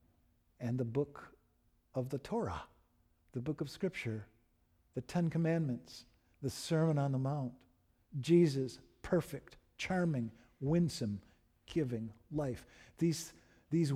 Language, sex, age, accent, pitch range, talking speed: English, male, 50-69, American, 110-145 Hz, 110 wpm